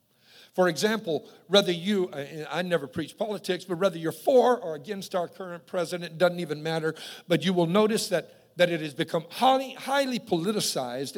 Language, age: English, 50-69